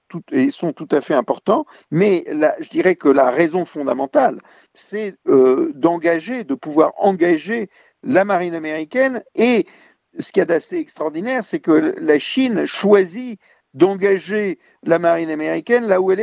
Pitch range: 155-210 Hz